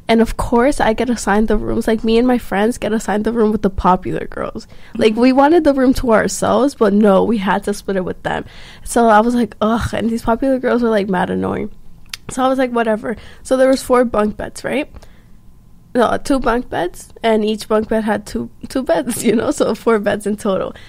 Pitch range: 210-245 Hz